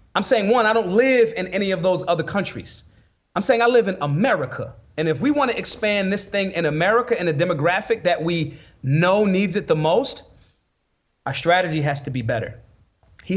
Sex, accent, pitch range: male, American, 160-215 Hz